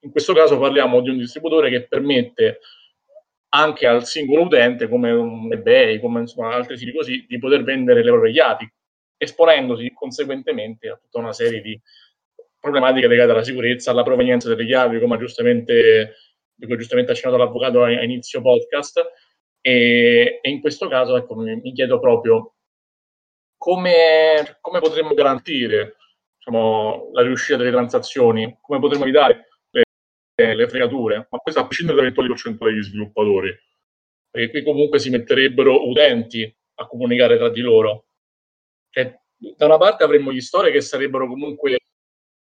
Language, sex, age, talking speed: Italian, male, 30-49, 145 wpm